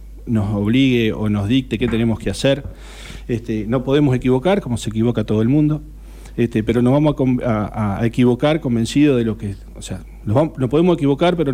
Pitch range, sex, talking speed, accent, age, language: 110-135 Hz, male, 205 wpm, Argentinian, 40-59, Spanish